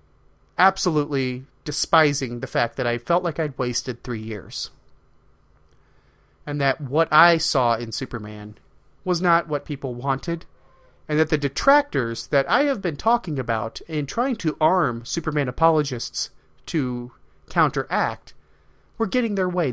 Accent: American